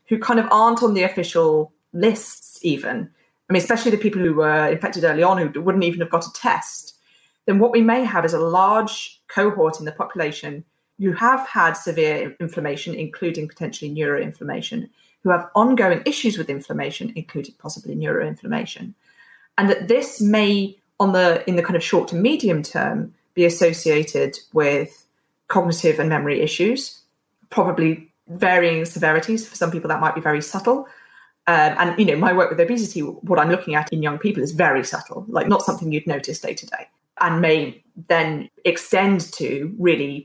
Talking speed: 175 wpm